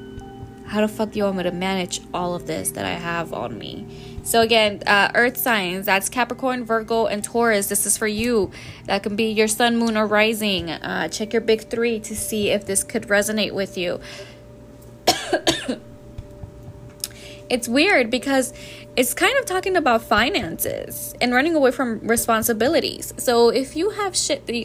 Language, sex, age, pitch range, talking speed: English, female, 10-29, 190-255 Hz, 175 wpm